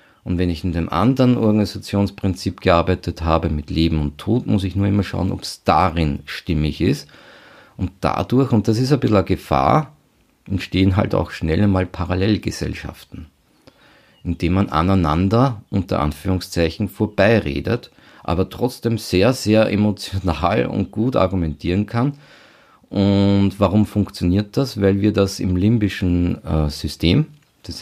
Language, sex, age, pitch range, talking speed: German, male, 50-69, 85-105 Hz, 140 wpm